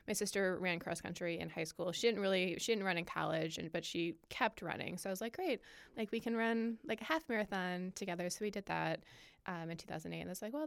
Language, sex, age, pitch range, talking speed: English, female, 20-39, 175-210 Hz, 260 wpm